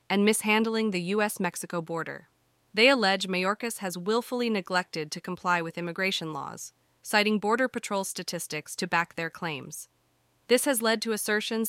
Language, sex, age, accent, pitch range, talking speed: English, female, 30-49, American, 175-215 Hz, 150 wpm